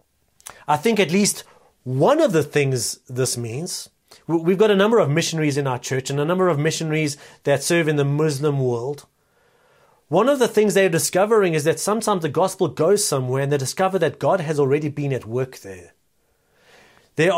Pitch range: 140-200 Hz